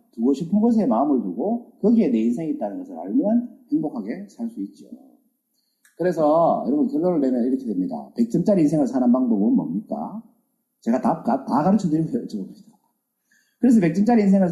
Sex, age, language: male, 40-59, Korean